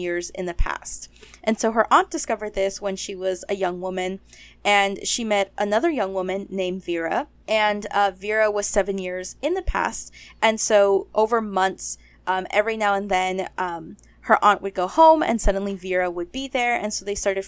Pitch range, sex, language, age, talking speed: 185-220 Hz, female, English, 20-39, 200 wpm